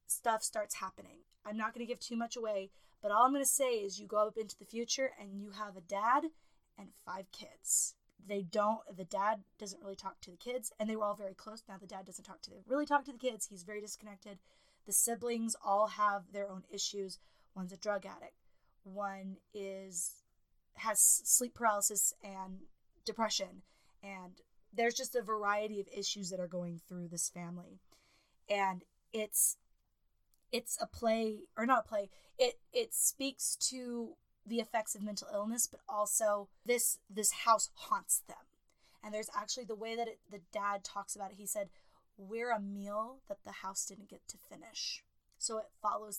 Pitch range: 195-235 Hz